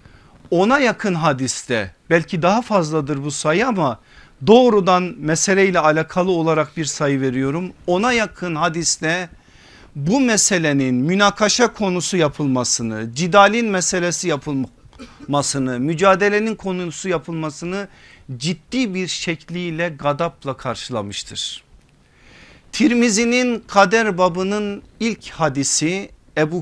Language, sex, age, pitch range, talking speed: Turkish, male, 50-69, 155-195 Hz, 90 wpm